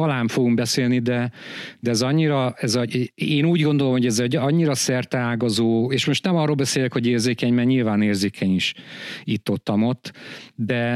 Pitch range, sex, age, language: 110-145 Hz, male, 50-69, Hungarian